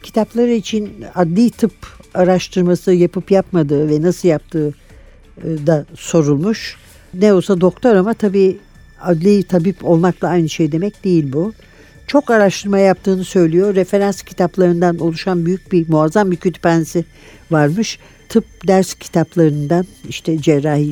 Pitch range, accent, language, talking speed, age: 150-190 Hz, native, Turkish, 125 wpm, 60-79